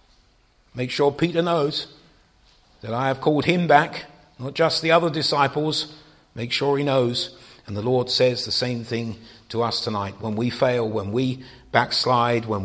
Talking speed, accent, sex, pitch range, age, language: 170 wpm, British, male, 105-135 Hz, 50-69, English